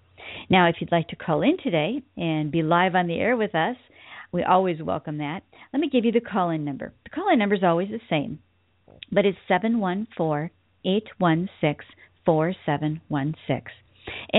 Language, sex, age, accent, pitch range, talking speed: English, female, 50-69, American, 155-220 Hz, 155 wpm